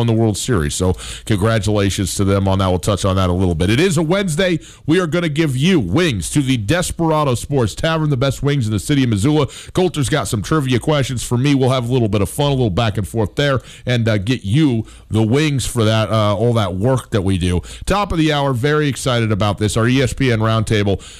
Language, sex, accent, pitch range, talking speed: English, male, American, 110-145 Hz, 245 wpm